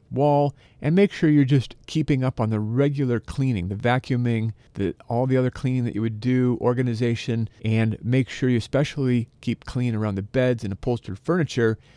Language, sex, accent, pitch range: English, male, American, 120-145 Hz